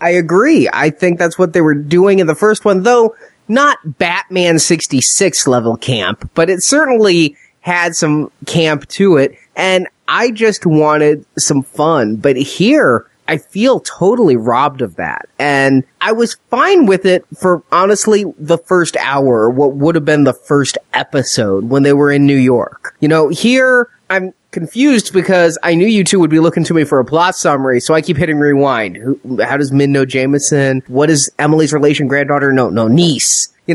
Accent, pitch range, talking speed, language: American, 145-185 Hz, 185 wpm, English